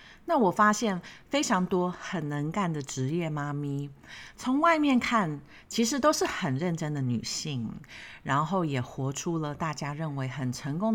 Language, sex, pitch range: Chinese, female, 140-220 Hz